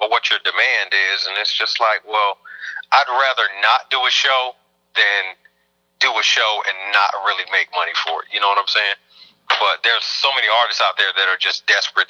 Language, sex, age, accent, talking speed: English, male, 30-49, American, 210 wpm